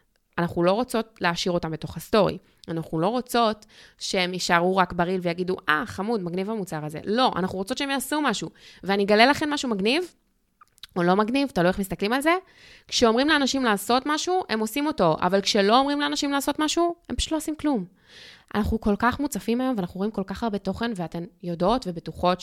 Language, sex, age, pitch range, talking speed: Hebrew, female, 20-39, 180-245 Hz, 185 wpm